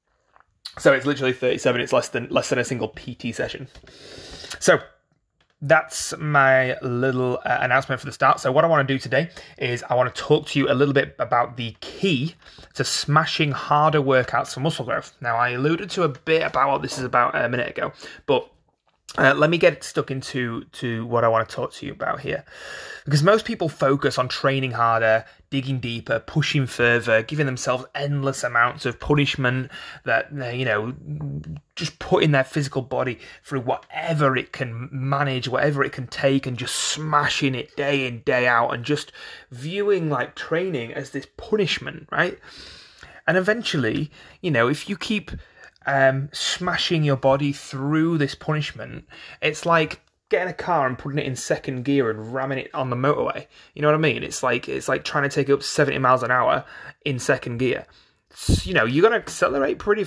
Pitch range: 130-155 Hz